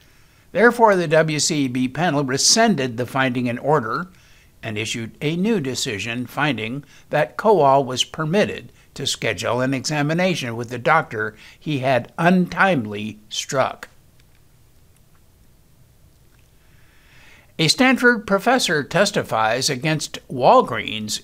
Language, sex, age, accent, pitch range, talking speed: English, male, 60-79, American, 125-185 Hz, 100 wpm